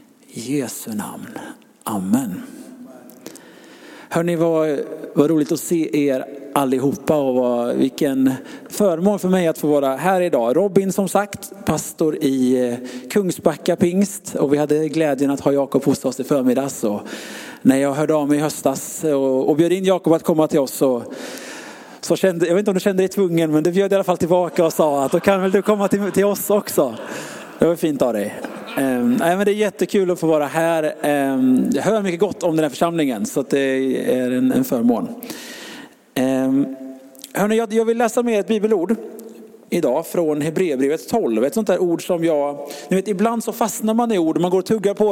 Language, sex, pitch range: Swedish, male, 145-205 Hz